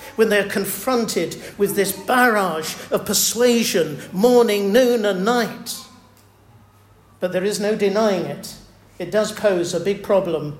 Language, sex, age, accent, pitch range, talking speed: English, male, 50-69, British, 160-235 Hz, 135 wpm